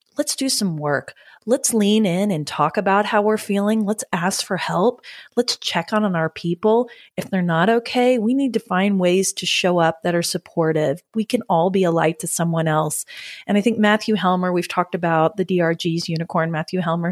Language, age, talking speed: English, 30-49, 210 wpm